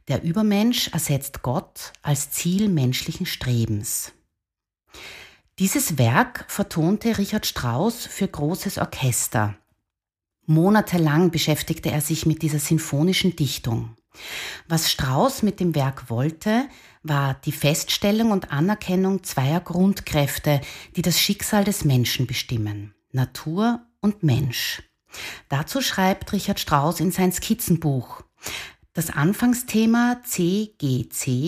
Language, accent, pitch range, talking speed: German, Austrian, 135-190 Hz, 110 wpm